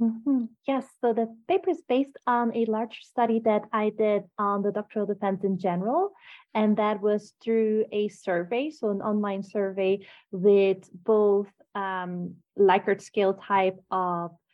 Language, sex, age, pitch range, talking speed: English, female, 30-49, 190-235 Hz, 155 wpm